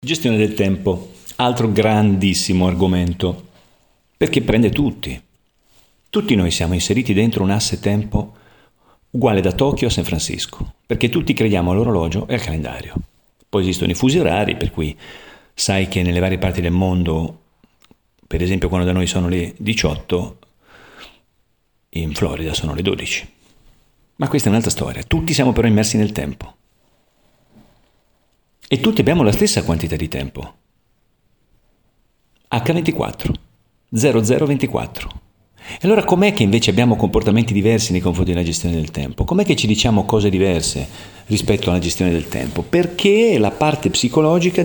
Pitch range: 90-115 Hz